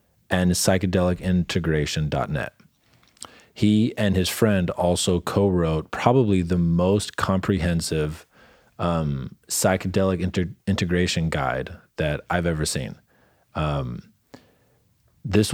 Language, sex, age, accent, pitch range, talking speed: English, male, 30-49, American, 80-95 Hz, 95 wpm